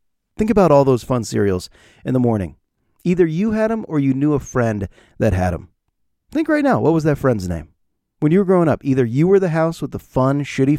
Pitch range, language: 105-145 Hz, English